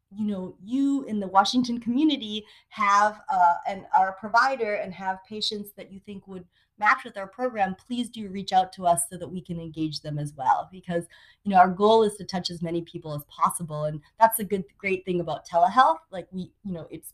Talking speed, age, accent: 215 wpm, 30-49, American